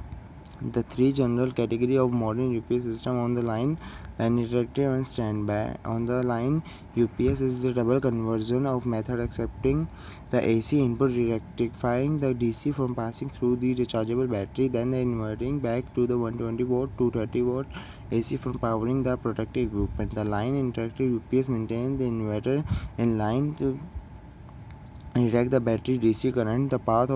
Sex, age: male, 20-39